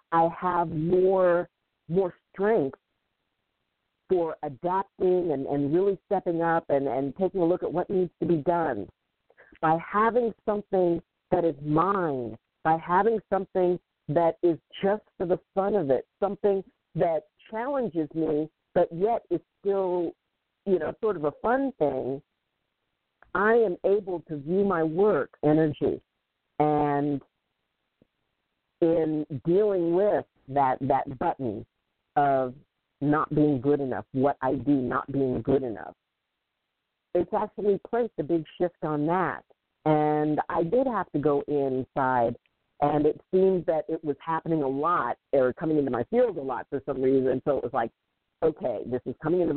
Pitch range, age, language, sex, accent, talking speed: 140-185 Hz, 50-69, English, female, American, 150 wpm